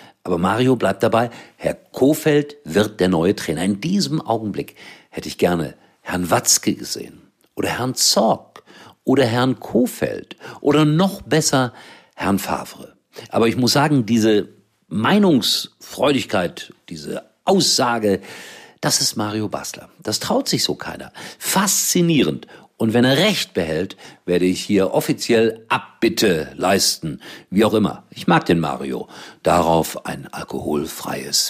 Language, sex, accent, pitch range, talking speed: German, male, German, 100-145 Hz, 130 wpm